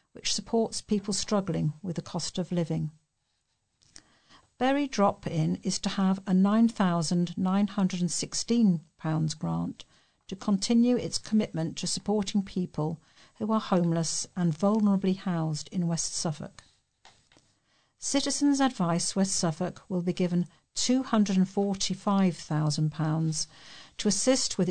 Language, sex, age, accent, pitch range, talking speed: English, female, 50-69, British, 165-205 Hz, 105 wpm